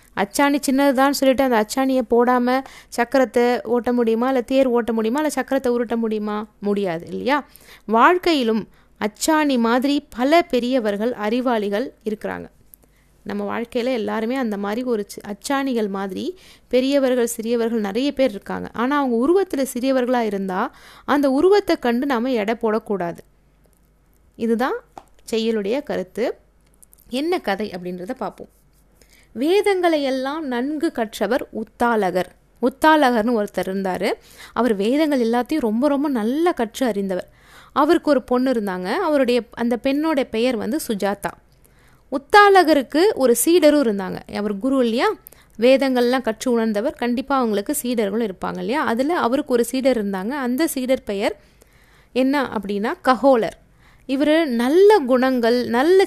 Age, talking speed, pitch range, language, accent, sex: 20-39, 120 wpm, 225-275 Hz, Tamil, native, female